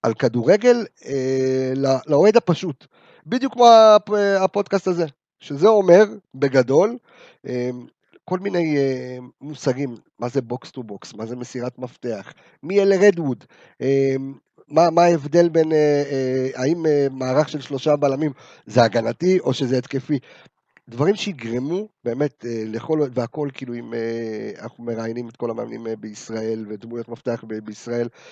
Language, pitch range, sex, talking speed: Hebrew, 125-180 Hz, male, 140 wpm